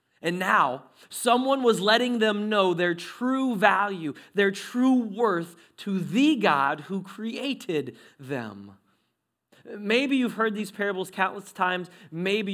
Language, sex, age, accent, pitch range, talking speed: English, male, 30-49, American, 130-185 Hz, 130 wpm